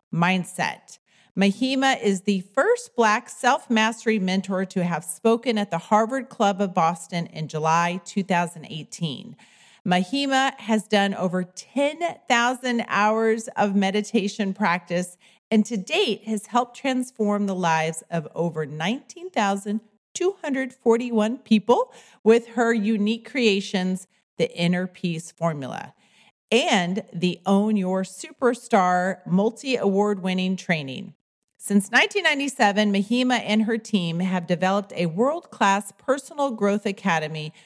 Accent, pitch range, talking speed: American, 180-235 Hz, 110 wpm